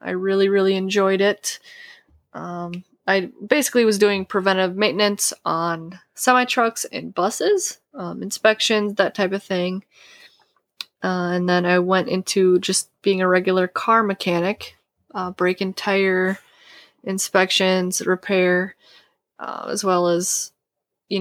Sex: female